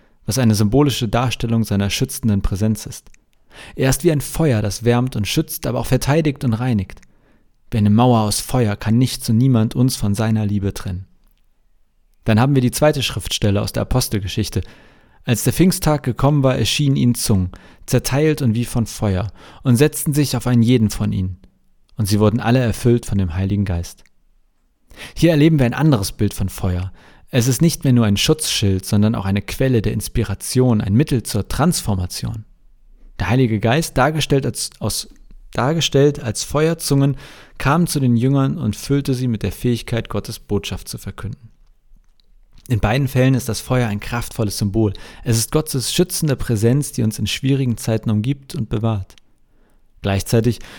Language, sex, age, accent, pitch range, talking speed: German, male, 40-59, German, 105-135 Hz, 170 wpm